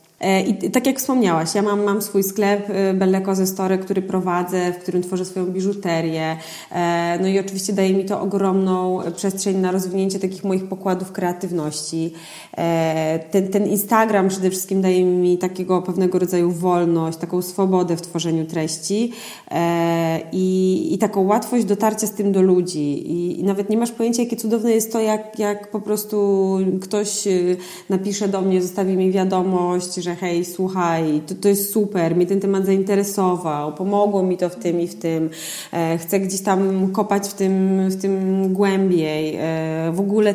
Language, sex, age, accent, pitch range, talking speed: Polish, female, 20-39, native, 175-200 Hz, 155 wpm